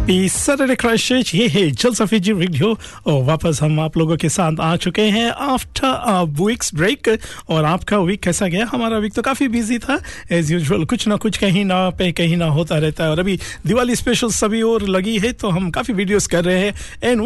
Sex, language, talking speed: male, Hindi, 195 wpm